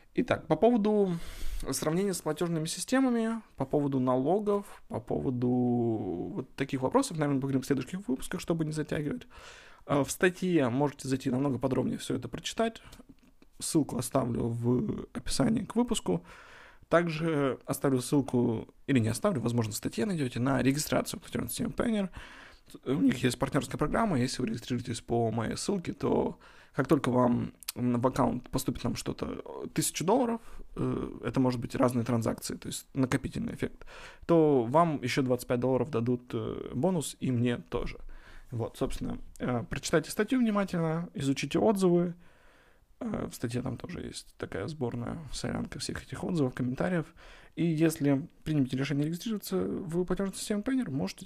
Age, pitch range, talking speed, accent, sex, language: 20-39, 125-180 Hz, 145 wpm, native, male, Russian